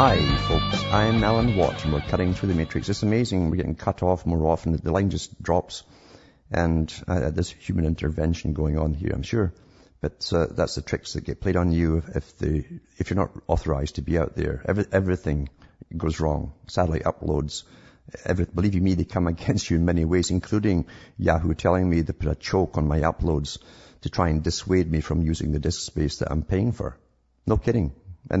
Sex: male